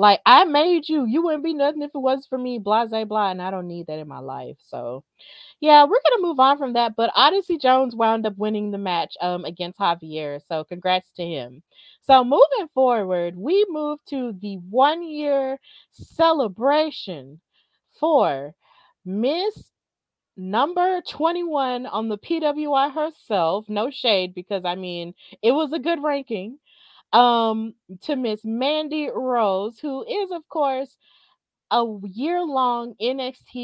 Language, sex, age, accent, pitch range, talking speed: English, female, 30-49, American, 200-295 Hz, 155 wpm